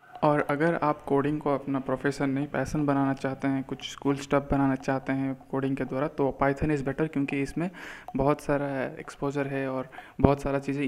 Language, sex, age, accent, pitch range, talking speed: Hindi, male, 20-39, native, 140-150 Hz, 195 wpm